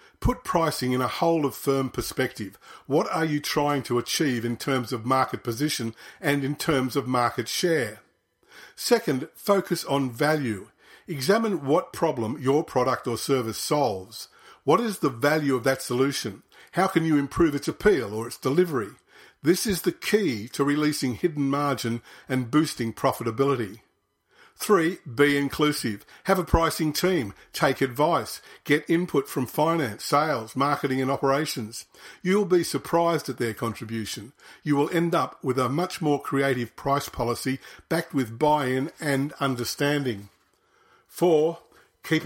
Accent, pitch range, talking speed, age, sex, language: Australian, 125-160 Hz, 150 wpm, 50-69, male, English